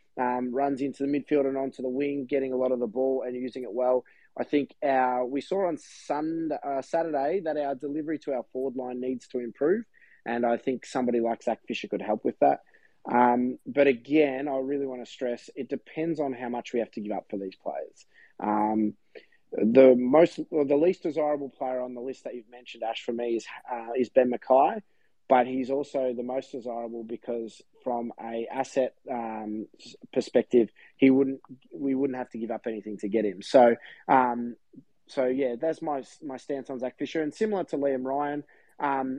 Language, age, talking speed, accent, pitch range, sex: English, 20-39, 205 wpm, Australian, 125-145 Hz, male